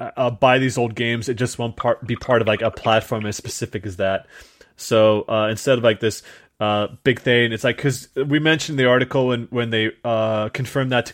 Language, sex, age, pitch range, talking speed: English, male, 20-39, 110-130 Hz, 220 wpm